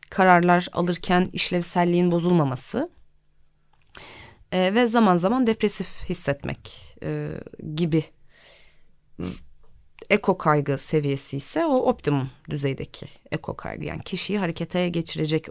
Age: 30-49